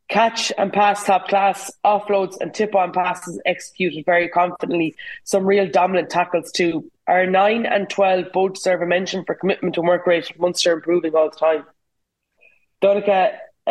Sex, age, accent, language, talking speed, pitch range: female, 20-39, Irish, English, 160 wpm, 175-200 Hz